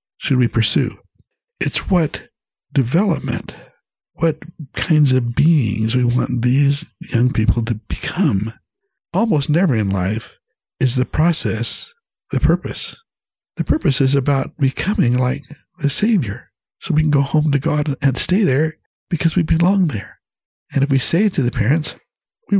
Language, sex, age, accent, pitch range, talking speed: English, male, 60-79, American, 115-155 Hz, 150 wpm